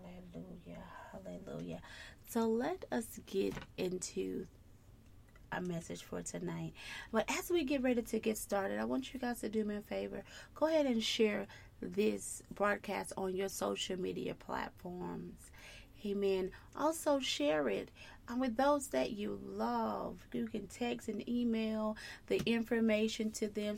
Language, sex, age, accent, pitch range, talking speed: English, female, 30-49, American, 195-235 Hz, 140 wpm